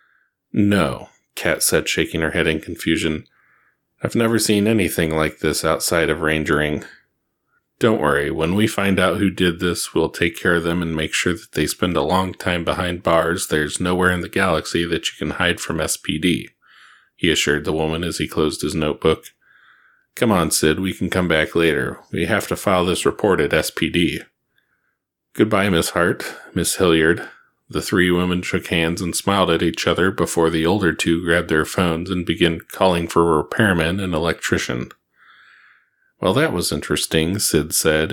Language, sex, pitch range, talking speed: English, male, 80-90 Hz, 180 wpm